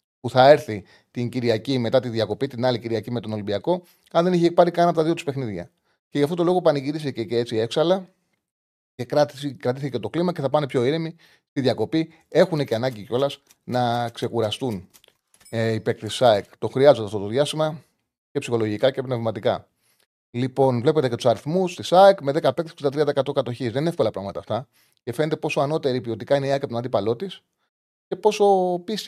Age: 30-49